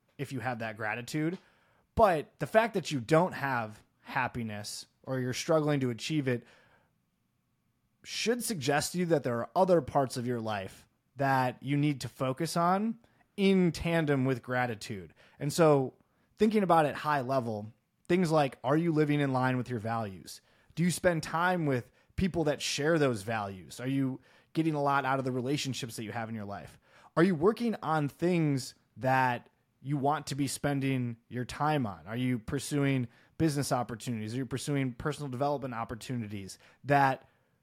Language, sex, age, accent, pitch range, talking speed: English, male, 20-39, American, 120-155 Hz, 175 wpm